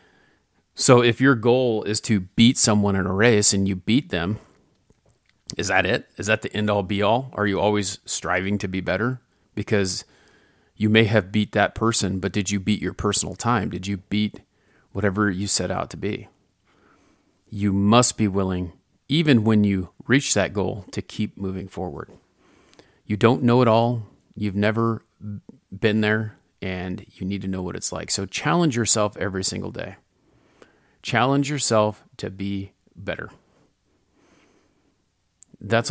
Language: English